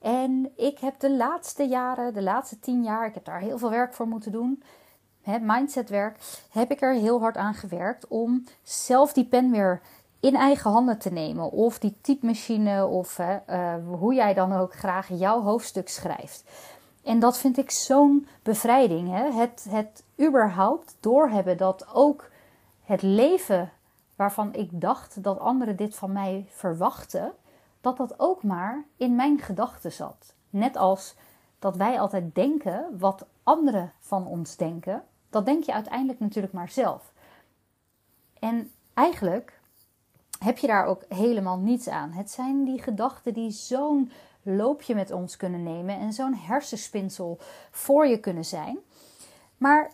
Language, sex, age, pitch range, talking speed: Dutch, female, 30-49, 195-260 Hz, 155 wpm